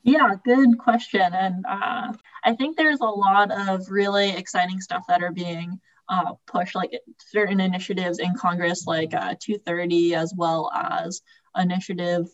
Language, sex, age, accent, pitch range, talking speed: English, female, 20-39, American, 170-215 Hz, 150 wpm